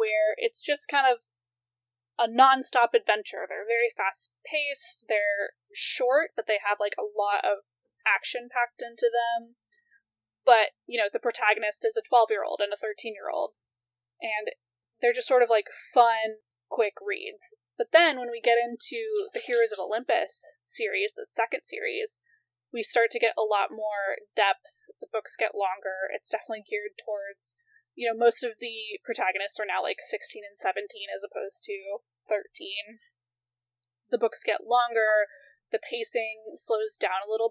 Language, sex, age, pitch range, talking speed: English, female, 10-29, 205-310 Hz, 160 wpm